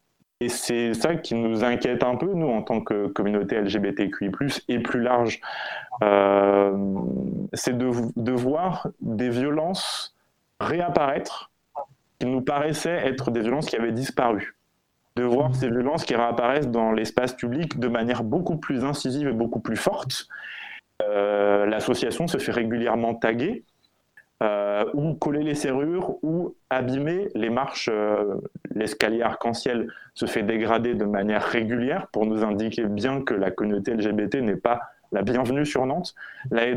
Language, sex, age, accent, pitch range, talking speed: French, male, 20-39, French, 105-130 Hz, 150 wpm